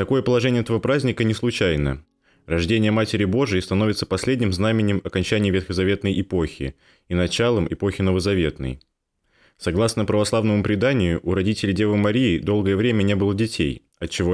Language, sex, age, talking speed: Russian, male, 20-39, 140 wpm